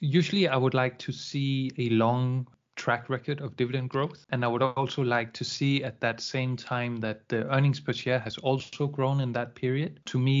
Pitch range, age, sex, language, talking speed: 120-135 Hz, 20-39, male, English, 215 wpm